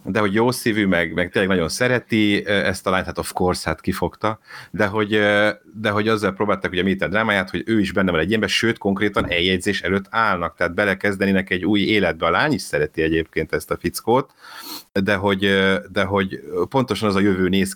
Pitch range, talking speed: 85-105 Hz, 205 wpm